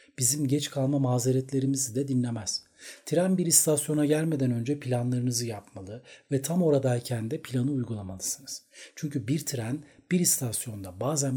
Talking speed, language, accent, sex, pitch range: 130 wpm, Turkish, native, male, 120-145 Hz